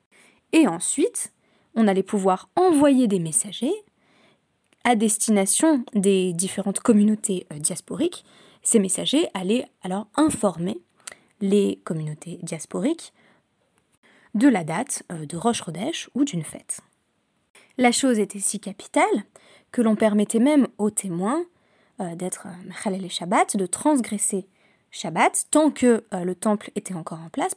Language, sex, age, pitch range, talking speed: French, female, 20-39, 190-250 Hz, 130 wpm